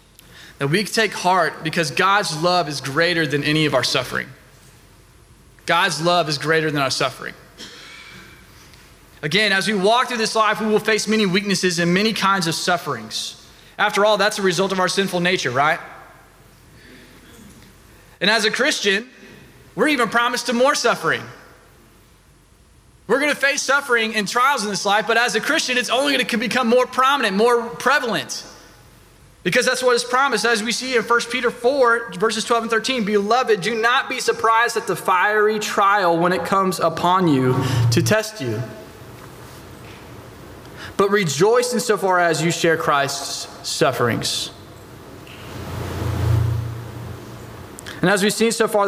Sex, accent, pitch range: male, American, 155-220 Hz